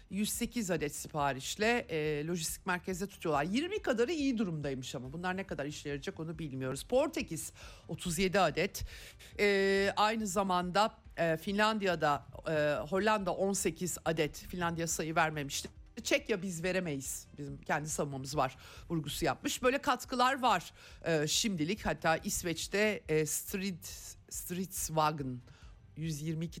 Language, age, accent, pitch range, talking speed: Turkish, 50-69, native, 150-205 Hz, 125 wpm